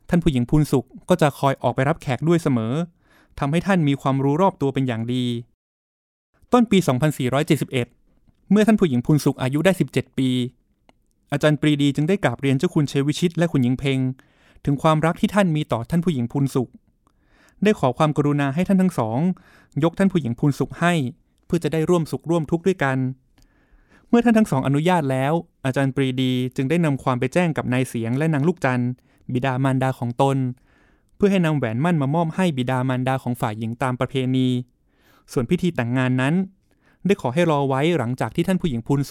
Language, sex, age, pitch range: Thai, male, 20-39, 130-165 Hz